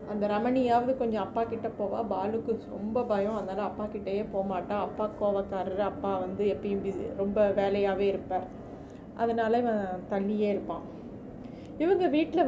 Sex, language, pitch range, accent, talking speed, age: female, Tamil, 205-245 Hz, native, 120 wpm, 30-49